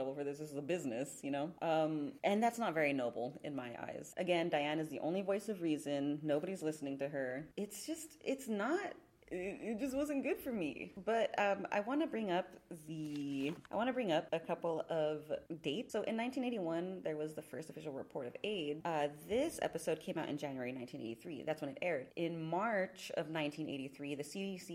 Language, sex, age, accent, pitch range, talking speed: English, female, 30-49, American, 140-185 Hz, 200 wpm